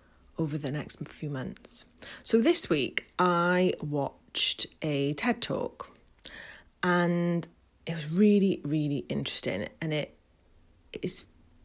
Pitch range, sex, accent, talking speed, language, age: 150-195 Hz, female, British, 115 wpm, English, 30-49